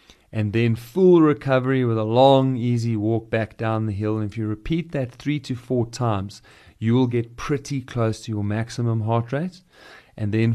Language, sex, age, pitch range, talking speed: English, male, 40-59, 105-125 Hz, 195 wpm